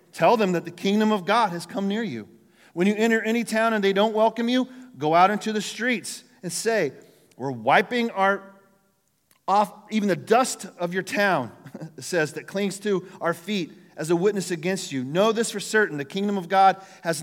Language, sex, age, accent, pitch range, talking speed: English, male, 40-59, American, 160-210 Hz, 205 wpm